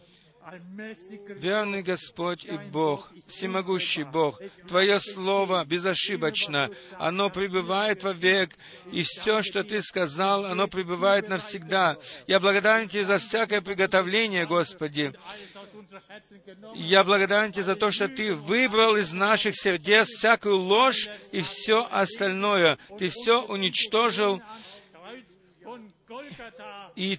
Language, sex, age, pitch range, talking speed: Russian, male, 50-69, 160-205 Hz, 105 wpm